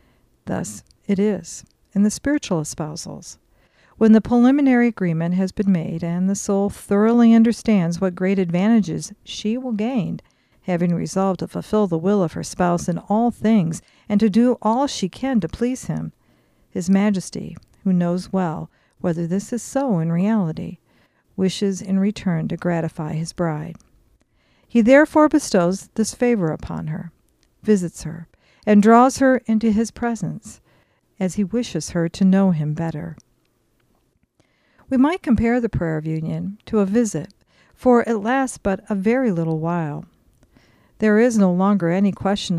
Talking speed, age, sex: 155 wpm, 50-69, female